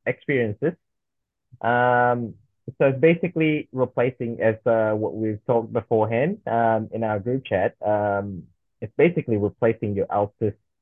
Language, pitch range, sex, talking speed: English, 110-125 Hz, male, 130 wpm